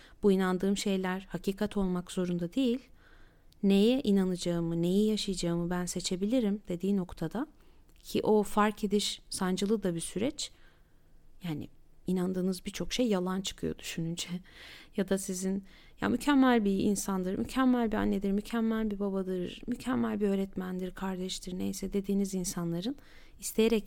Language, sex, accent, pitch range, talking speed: Turkish, female, native, 190-235 Hz, 130 wpm